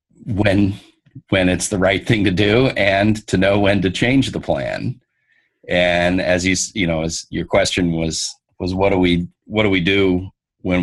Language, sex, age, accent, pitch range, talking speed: English, male, 40-59, American, 85-100 Hz, 190 wpm